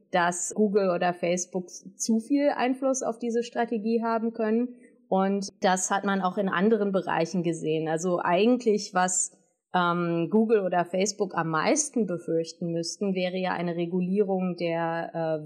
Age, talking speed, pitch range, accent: 30-49, 150 wpm, 175-210 Hz, German